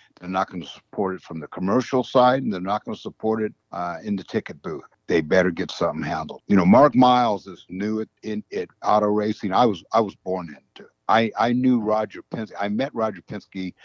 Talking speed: 235 wpm